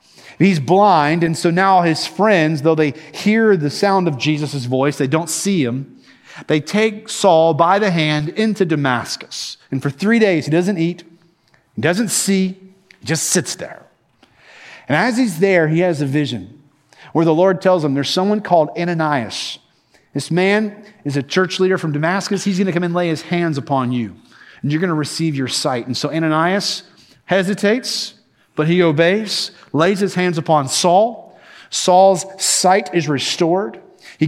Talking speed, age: 175 wpm, 40-59